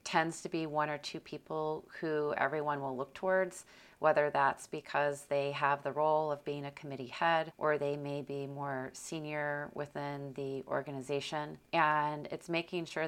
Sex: female